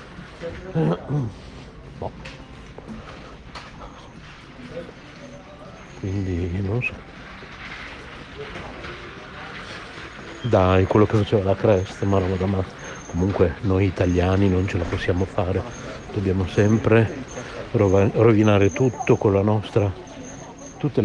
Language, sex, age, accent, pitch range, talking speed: Italian, male, 60-79, native, 95-120 Hz, 85 wpm